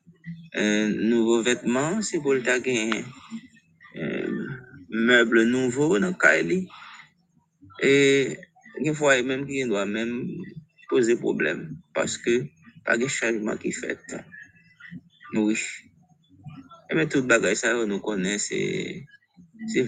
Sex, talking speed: male, 120 wpm